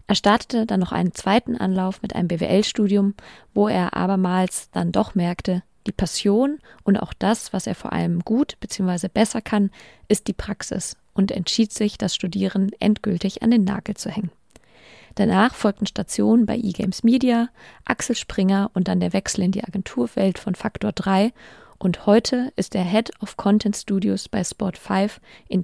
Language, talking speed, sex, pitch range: German, 170 wpm, female, 190-225 Hz